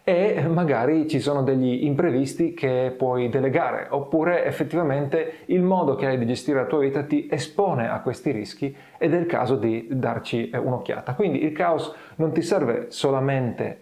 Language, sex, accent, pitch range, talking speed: Italian, male, native, 125-155 Hz, 170 wpm